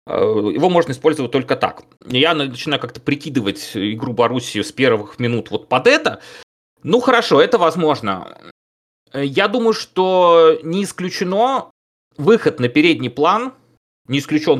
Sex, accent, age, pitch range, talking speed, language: male, native, 30-49, 120-165 Hz, 130 wpm, Russian